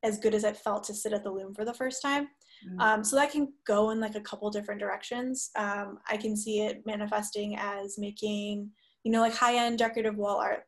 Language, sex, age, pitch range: English, female, 10-29, 205-230 Hz